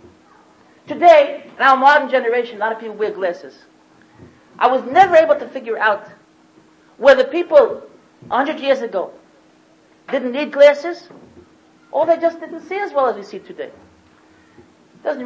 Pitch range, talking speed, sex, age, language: 245-305 Hz, 150 wpm, male, 50-69, English